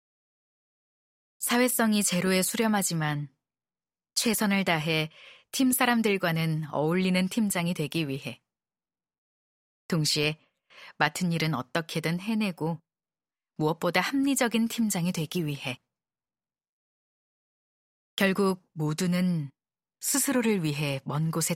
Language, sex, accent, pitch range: Korean, female, native, 150-185 Hz